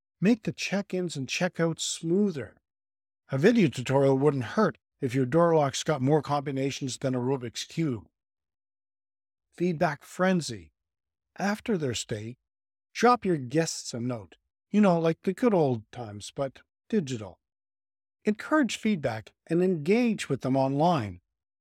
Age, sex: 50-69, male